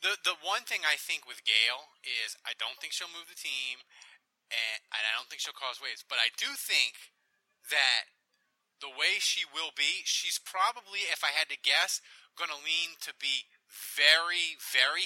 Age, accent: 20-39, American